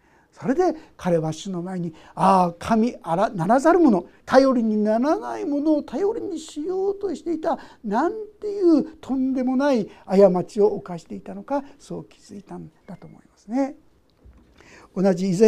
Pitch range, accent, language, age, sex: 185-260 Hz, native, Japanese, 60-79, male